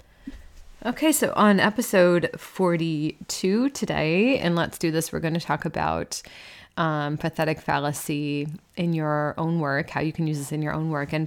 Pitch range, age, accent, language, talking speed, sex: 150-180 Hz, 20-39, American, English, 170 wpm, female